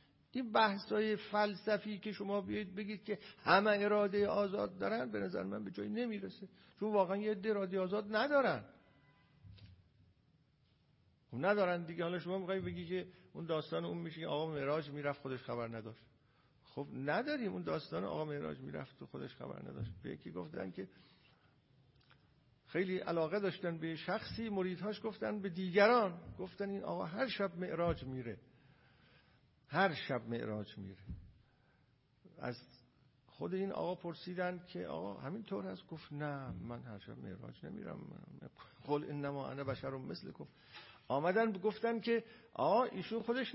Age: 50-69